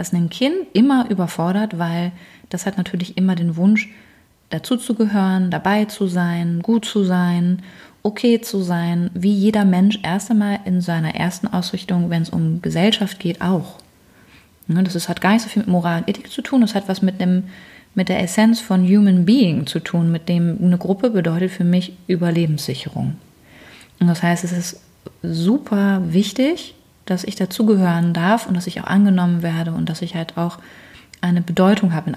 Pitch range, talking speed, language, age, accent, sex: 170-200 Hz, 175 wpm, German, 30-49, German, female